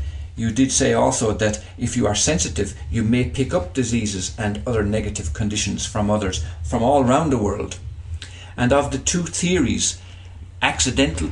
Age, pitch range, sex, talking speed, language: 50-69, 90-120 Hz, male, 165 wpm, English